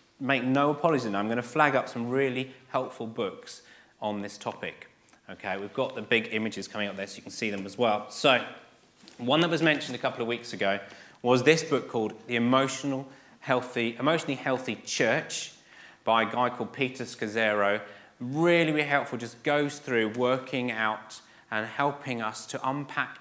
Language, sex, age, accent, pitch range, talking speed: English, male, 30-49, British, 110-145 Hz, 180 wpm